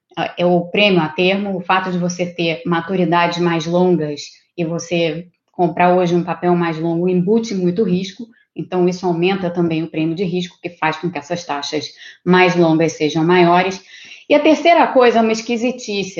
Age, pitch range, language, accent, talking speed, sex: 20-39, 170-220 Hz, Portuguese, Brazilian, 180 wpm, female